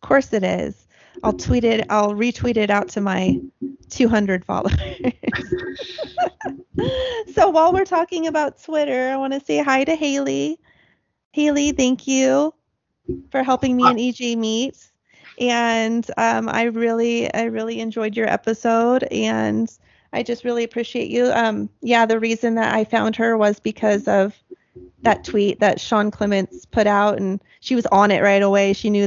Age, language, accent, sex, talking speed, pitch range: 30-49, English, American, female, 160 wpm, 200-260 Hz